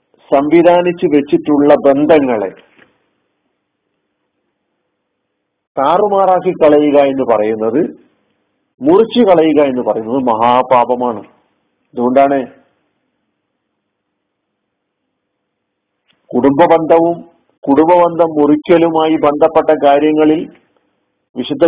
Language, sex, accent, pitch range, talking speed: Malayalam, male, native, 135-170 Hz, 55 wpm